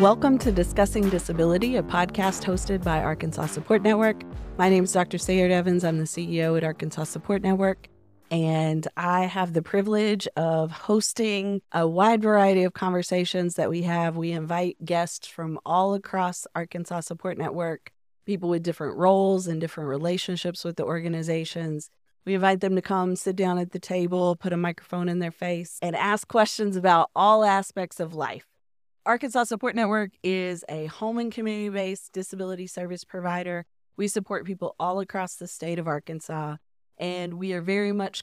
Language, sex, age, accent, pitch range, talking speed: English, female, 30-49, American, 165-195 Hz, 170 wpm